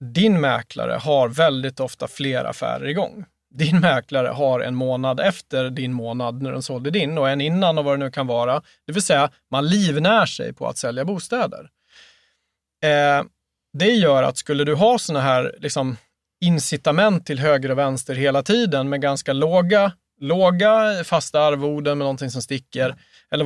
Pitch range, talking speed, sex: 135-175 Hz, 165 wpm, male